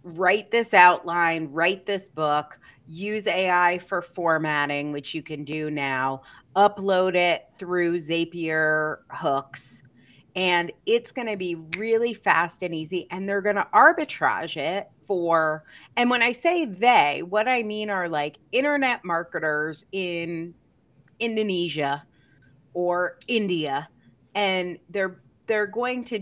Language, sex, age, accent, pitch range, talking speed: English, female, 30-49, American, 155-200 Hz, 130 wpm